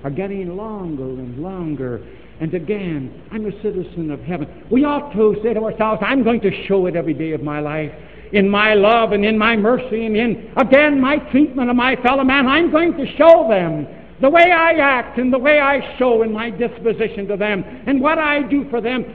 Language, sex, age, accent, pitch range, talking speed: English, male, 70-89, American, 160-240 Hz, 215 wpm